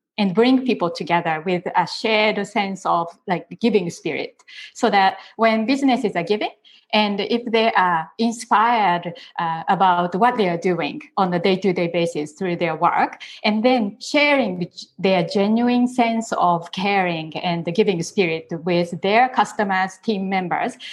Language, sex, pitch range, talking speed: English, female, 175-235 Hz, 160 wpm